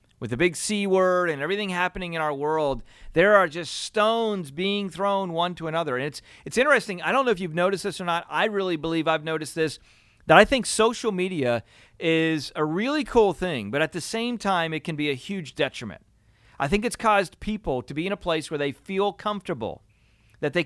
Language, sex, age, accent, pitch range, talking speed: English, male, 40-59, American, 150-195 Hz, 220 wpm